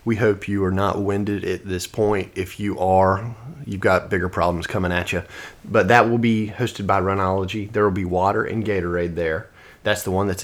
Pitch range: 95-110 Hz